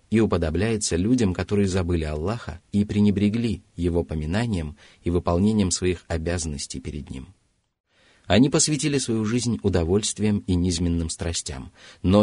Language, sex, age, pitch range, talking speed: Russian, male, 30-49, 85-105 Hz, 125 wpm